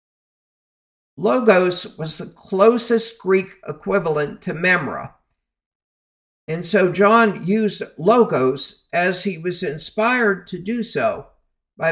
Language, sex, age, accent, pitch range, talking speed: English, male, 50-69, American, 140-205 Hz, 105 wpm